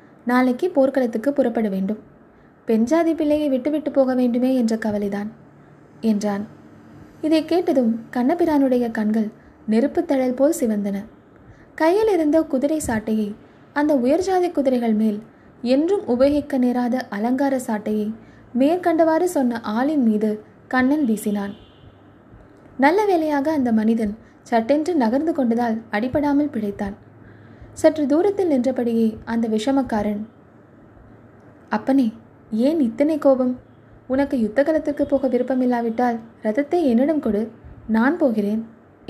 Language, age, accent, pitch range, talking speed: Tamil, 20-39, native, 225-285 Hz, 100 wpm